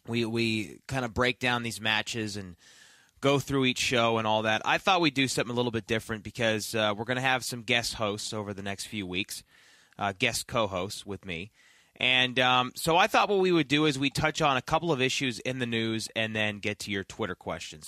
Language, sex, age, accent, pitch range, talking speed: English, male, 20-39, American, 110-135 Hz, 240 wpm